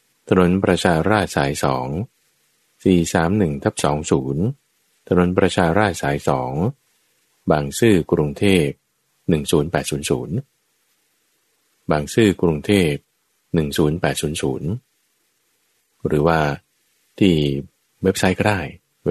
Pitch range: 80-95 Hz